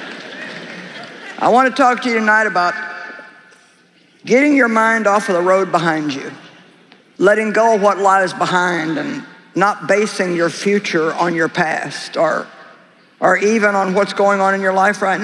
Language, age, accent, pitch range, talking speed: English, 50-69, American, 175-215 Hz, 165 wpm